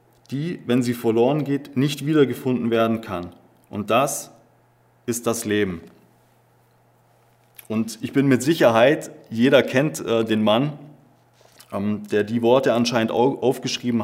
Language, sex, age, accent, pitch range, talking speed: German, male, 20-39, German, 110-130 Hz, 130 wpm